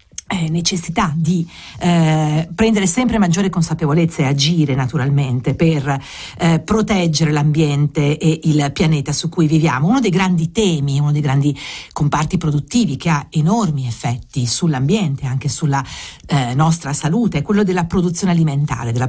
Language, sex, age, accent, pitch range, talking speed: English, female, 50-69, Italian, 150-180 Hz, 150 wpm